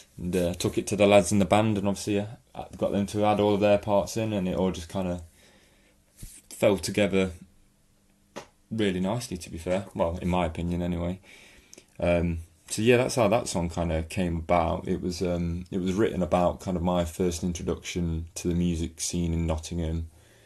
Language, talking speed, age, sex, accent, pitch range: English, 200 wpm, 20-39, male, British, 85-95 Hz